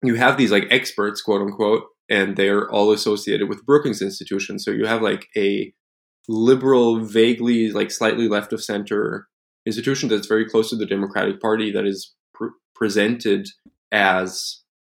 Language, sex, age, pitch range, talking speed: English, male, 20-39, 100-115 Hz, 160 wpm